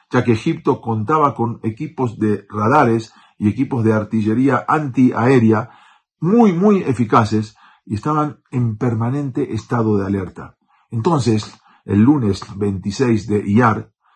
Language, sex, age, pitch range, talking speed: Spanish, male, 50-69, 110-150 Hz, 125 wpm